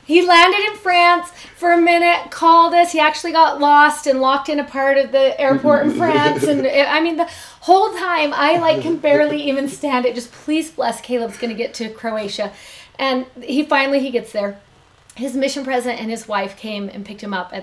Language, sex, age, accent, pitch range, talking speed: English, female, 30-49, American, 210-270 Hz, 220 wpm